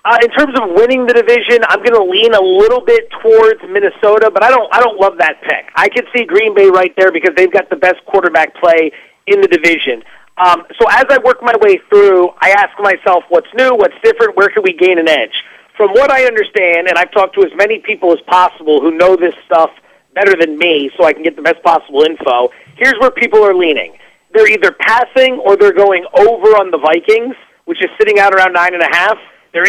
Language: English